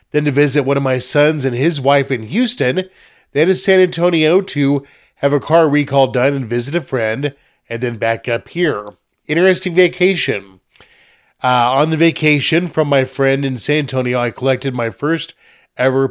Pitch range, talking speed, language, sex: 110-140 Hz, 180 wpm, English, male